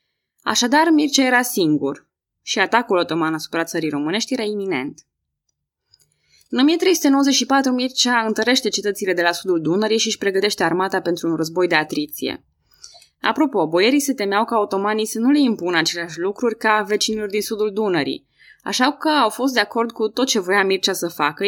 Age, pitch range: 20-39, 170-245 Hz